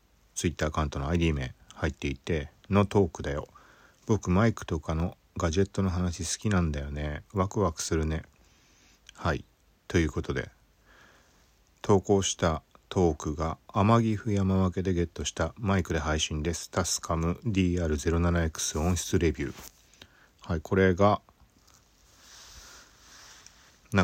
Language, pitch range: Japanese, 75-100 Hz